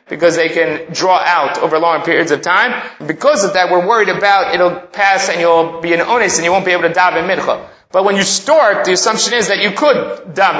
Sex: male